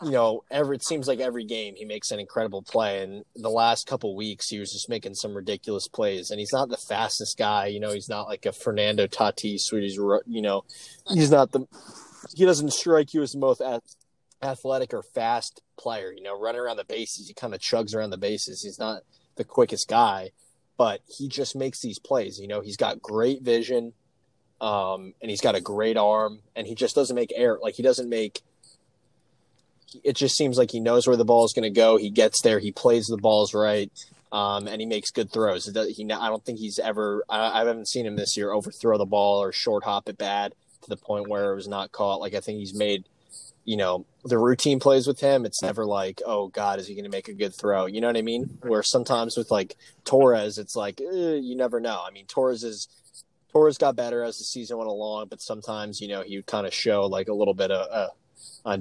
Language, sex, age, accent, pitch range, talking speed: English, male, 20-39, American, 105-125 Hz, 235 wpm